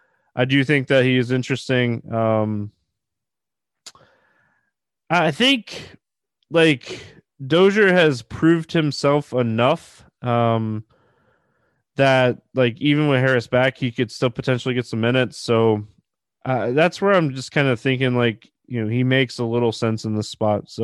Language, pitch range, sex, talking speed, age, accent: English, 115-140 Hz, male, 145 wpm, 20-39, American